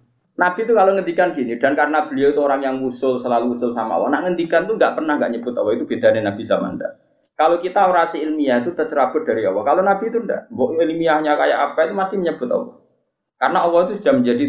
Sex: male